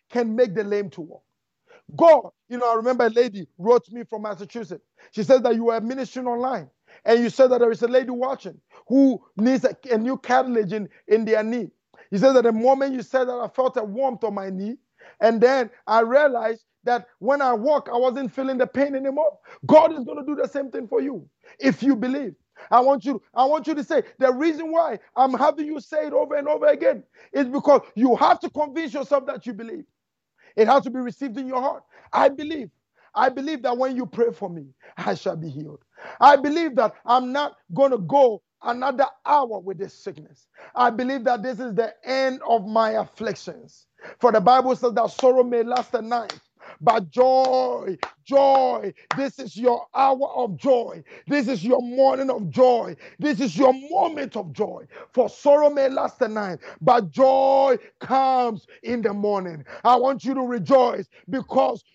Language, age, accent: English, 50-69, Nigerian